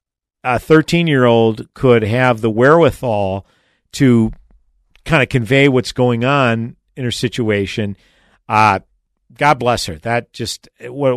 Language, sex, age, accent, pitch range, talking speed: English, male, 50-69, American, 105-130 Hz, 120 wpm